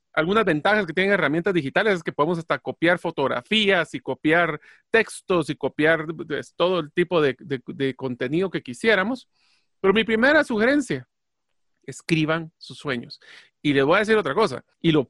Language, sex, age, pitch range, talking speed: Spanish, male, 40-59, 150-205 Hz, 170 wpm